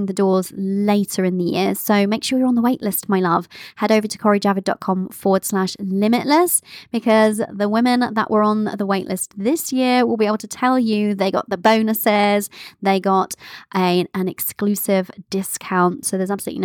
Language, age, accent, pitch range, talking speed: English, 20-39, British, 190-245 Hz, 185 wpm